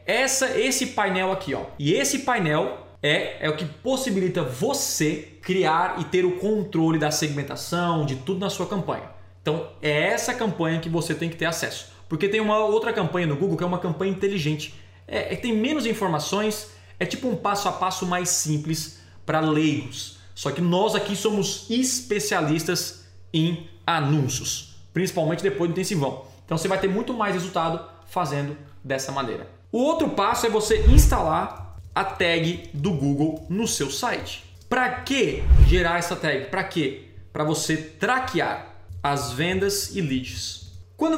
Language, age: Portuguese, 20-39